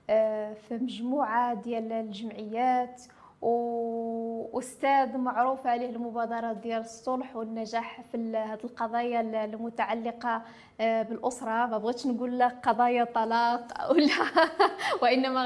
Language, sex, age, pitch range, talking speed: French, female, 20-39, 235-265 Hz, 95 wpm